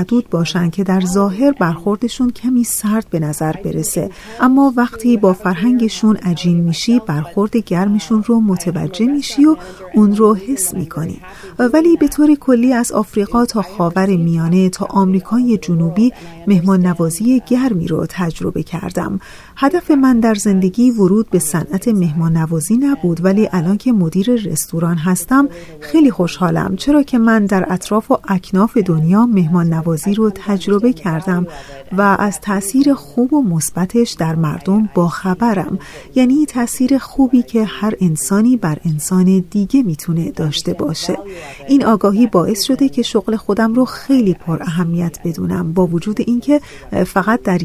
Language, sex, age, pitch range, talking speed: Persian, female, 40-59, 175-235 Hz, 140 wpm